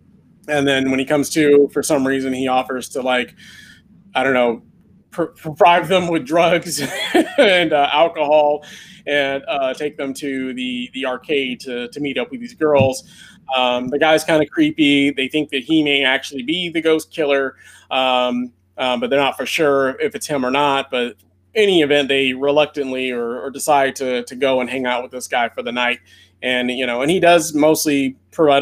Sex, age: male, 20-39